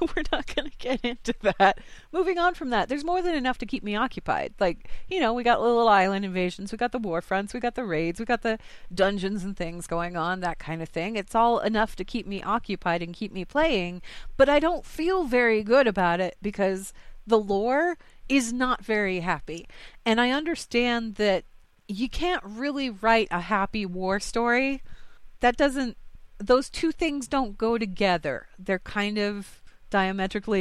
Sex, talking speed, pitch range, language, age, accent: female, 190 wpm, 180-250 Hz, English, 30-49, American